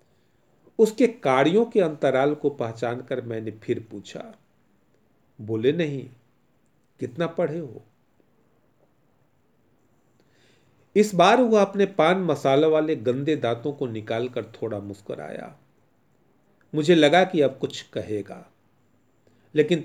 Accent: native